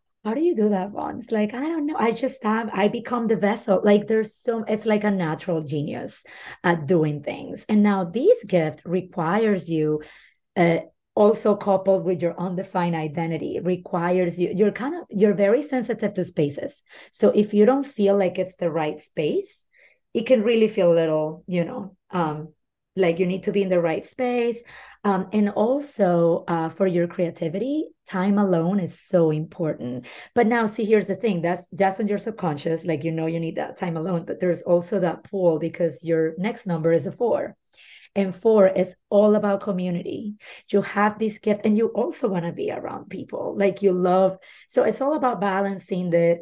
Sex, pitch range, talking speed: female, 170-210 Hz, 195 wpm